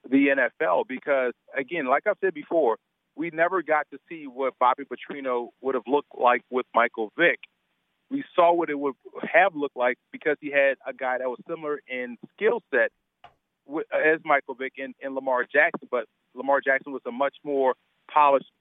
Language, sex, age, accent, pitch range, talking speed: English, male, 40-59, American, 130-160 Hz, 185 wpm